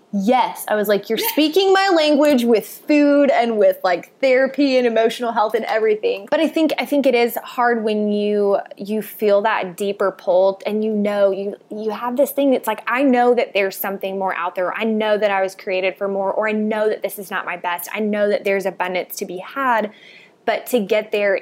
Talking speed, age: 225 wpm, 20-39